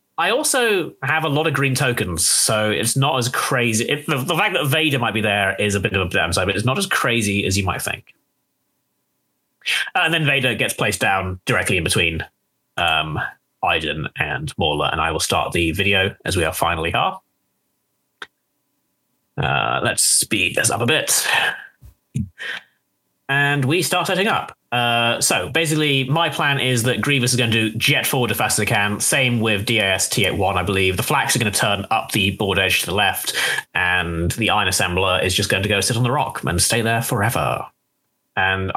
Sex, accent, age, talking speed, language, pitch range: male, British, 30-49, 200 wpm, English, 100-135 Hz